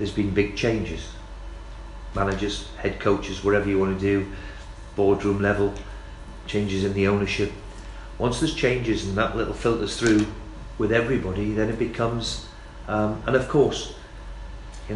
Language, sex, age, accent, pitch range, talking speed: English, male, 40-59, British, 100-115 Hz, 145 wpm